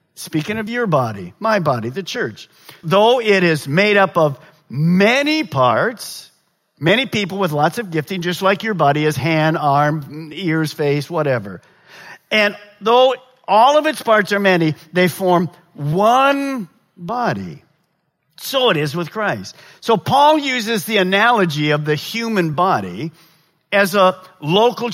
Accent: American